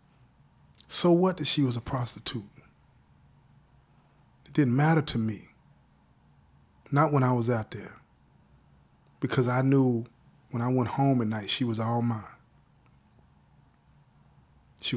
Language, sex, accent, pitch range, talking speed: English, male, American, 115-145 Hz, 130 wpm